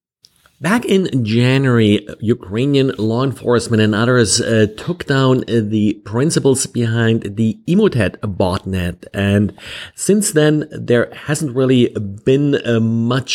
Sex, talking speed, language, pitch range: male, 115 wpm, English, 110-140 Hz